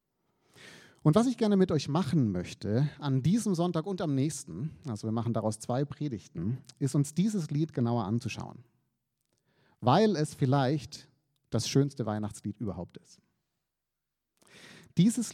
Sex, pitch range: male, 120-155 Hz